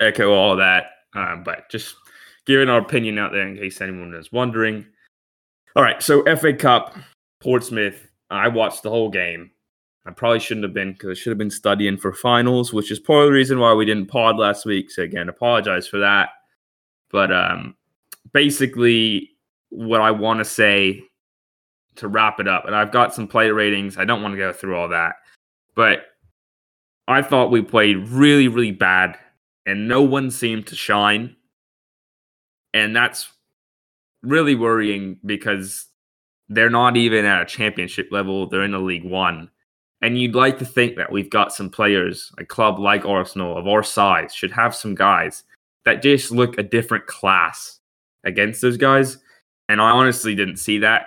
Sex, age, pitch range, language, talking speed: male, 20-39, 95-115 Hz, English, 175 wpm